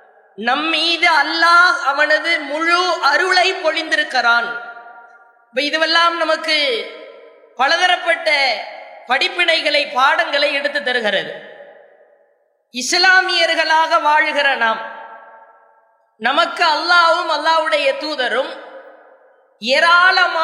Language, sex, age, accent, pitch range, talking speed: English, female, 20-39, Indian, 280-345 Hz, 70 wpm